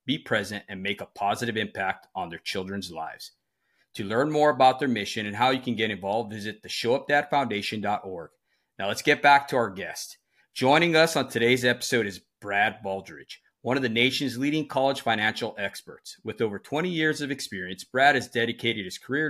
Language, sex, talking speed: English, male, 185 wpm